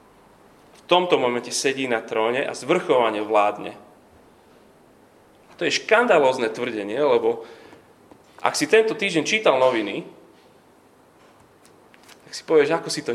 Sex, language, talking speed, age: male, Slovak, 125 wpm, 30-49